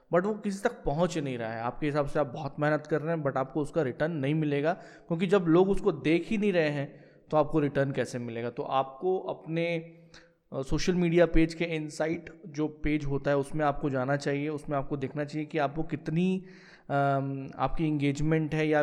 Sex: male